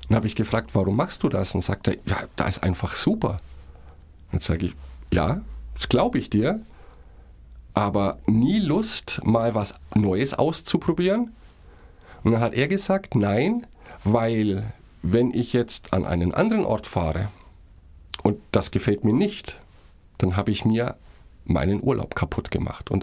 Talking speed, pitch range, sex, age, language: 155 wpm, 90-140 Hz, male, 50-69, German